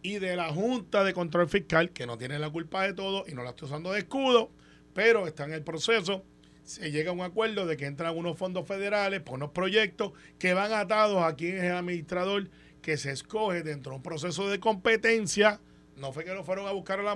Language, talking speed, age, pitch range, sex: Spanish, 230 wpm, 30-49, 140-195 Hz, male